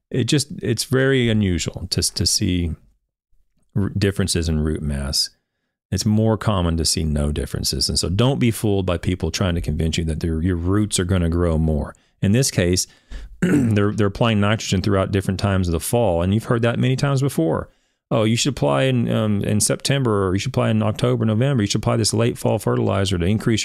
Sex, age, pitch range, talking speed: male, 40-59, 90-120 Hz, 215 wpm